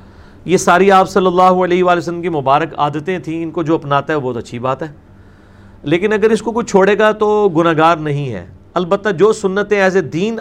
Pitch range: 150-195 Hz